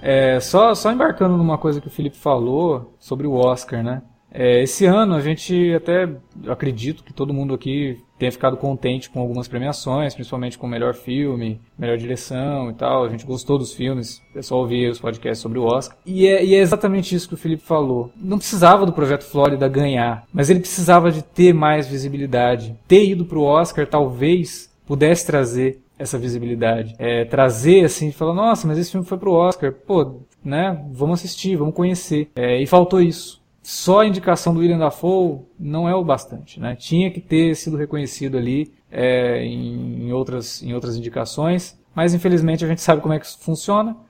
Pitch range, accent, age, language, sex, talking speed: 130-170 Hz, Brazilian, 20-39, Portuguese, male, 185 wpm